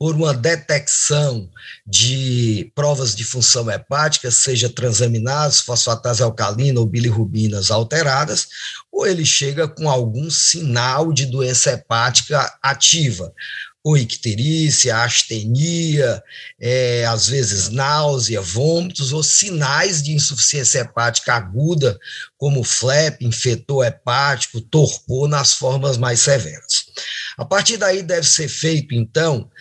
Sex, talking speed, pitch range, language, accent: male, 110 wpm, 120-150 Hz, Portuguese, Brazilian